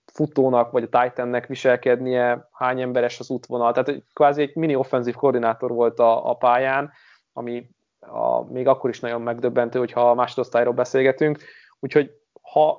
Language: Hungarian